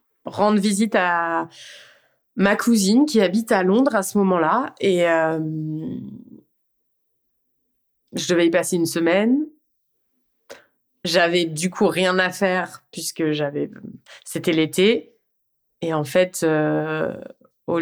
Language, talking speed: French, 120 wpm